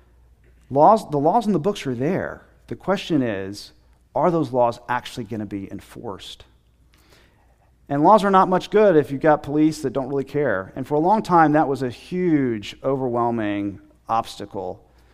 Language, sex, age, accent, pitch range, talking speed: English, male, 40-59, American, 120-185 Hz, 170 wpm